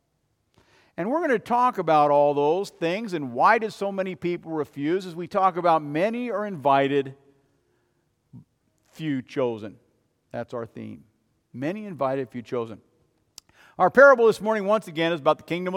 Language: English